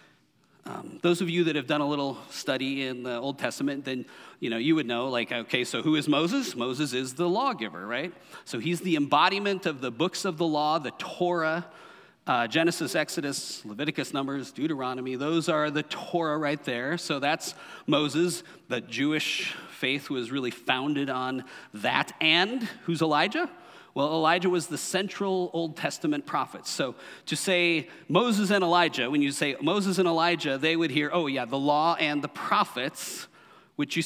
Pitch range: 135-170 Hz